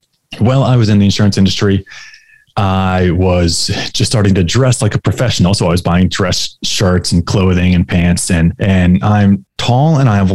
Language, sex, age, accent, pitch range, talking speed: English, male, 20-39, American, 85-105 Hz, 190 wpm